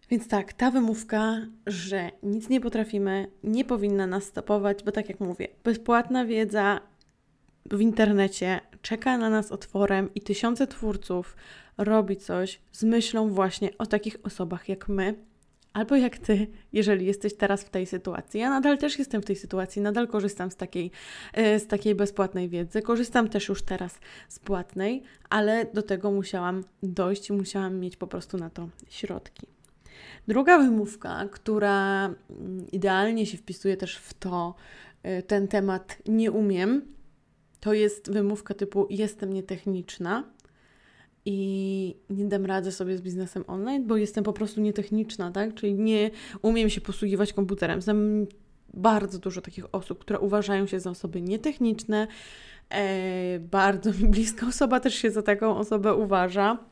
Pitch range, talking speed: 195-215 Hz, 145 wpm